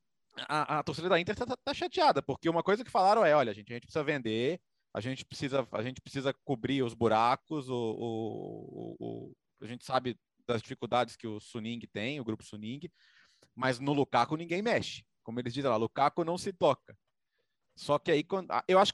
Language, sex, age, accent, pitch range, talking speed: Portuguese, male, 30-49, Brazilian, 135-200 Hz, 175 wpm